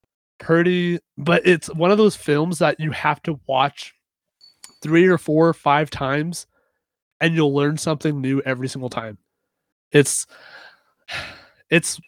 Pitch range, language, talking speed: 135-160 Hz, English, 140 wpm